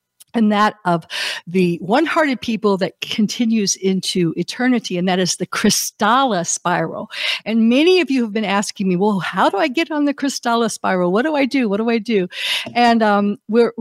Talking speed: 190 wpm